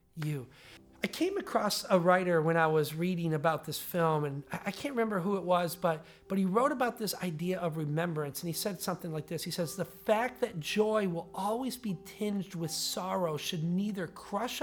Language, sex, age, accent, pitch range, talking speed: English, male, 40-59, American, 170-210 Hz, 205 wpm